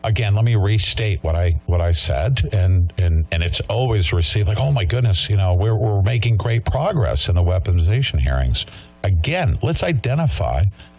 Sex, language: male, English